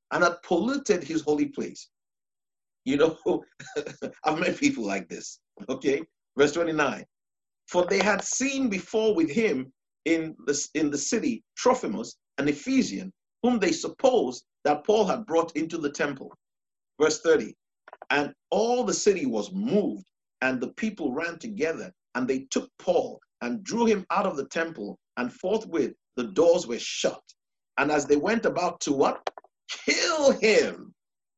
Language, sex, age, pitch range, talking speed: English, male, 50-69, 155-245 Hz, 150 wpm